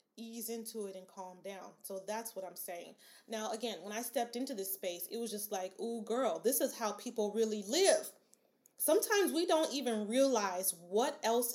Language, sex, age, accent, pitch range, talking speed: English, female, 30-49, American, 195-240 Hz, 190 wpm